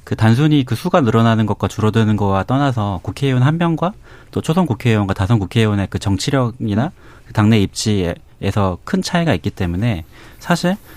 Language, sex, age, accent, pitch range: Korean, male, 30-49, native, 100-130 Hz